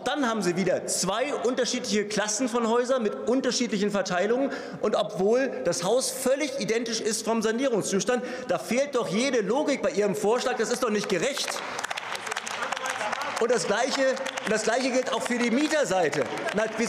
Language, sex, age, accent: German, male, 40-59, German